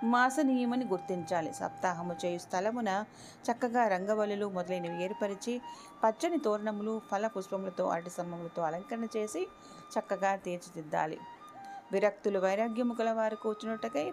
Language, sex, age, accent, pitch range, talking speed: Telugu, female, 30-49, native, 180-255 Hz, 95 wpm